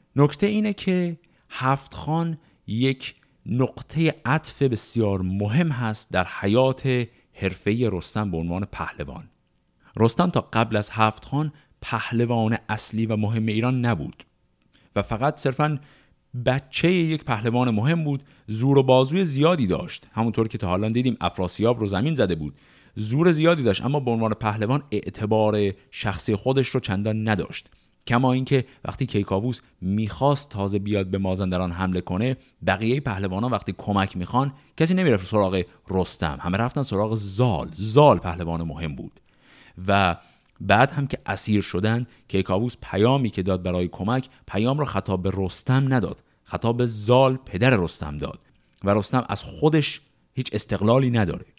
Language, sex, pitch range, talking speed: Persian, male, 100-135 Hz, 145 wpm